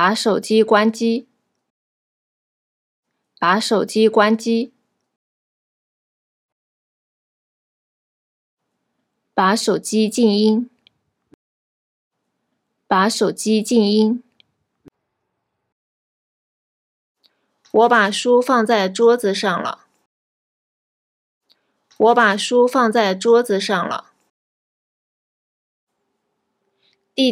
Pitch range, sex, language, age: 200-235 Hz, female, Japanese, 20-39